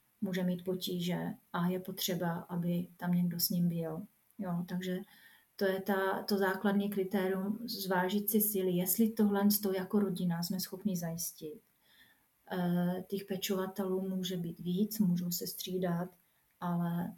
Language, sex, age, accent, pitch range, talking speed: Czech, female, 30-49, native, 180-200 Hz, 135 wpm